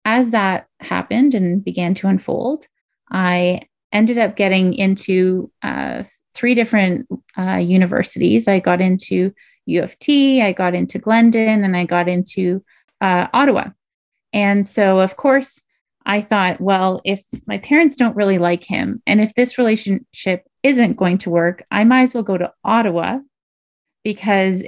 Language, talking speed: English, 155 wpm